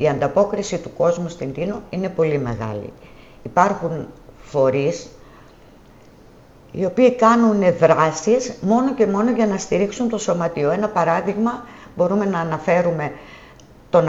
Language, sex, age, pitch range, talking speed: Greek, female, 50-69, 140-220 Hz, 125 wpm